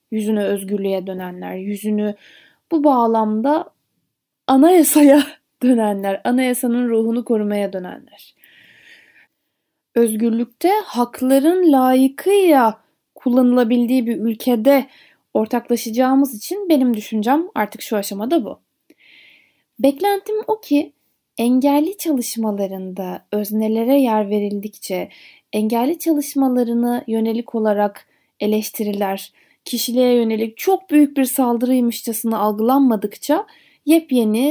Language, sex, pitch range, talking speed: Turkish, female, 215-285 Hz, 80 wpm